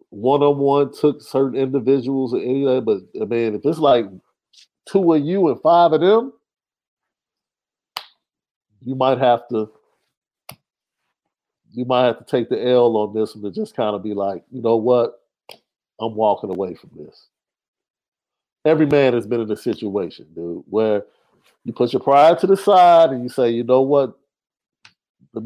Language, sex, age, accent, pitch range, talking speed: English, male, 50-69, American, 125-185 Hz, 165 wpm